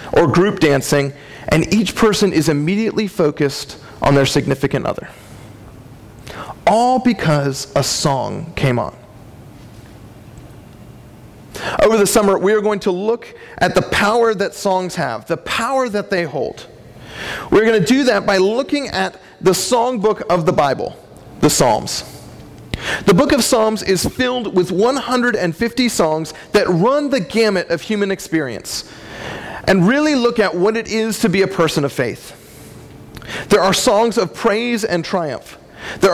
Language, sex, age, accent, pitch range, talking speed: English, male, 40-59, American, 160-230 Hz, 150 wpm